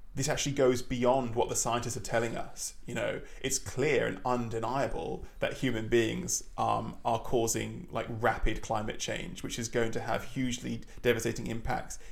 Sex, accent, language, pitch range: male, British, English, 110-125 Hz